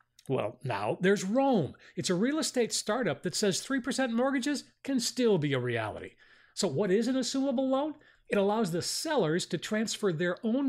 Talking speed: 180 wpm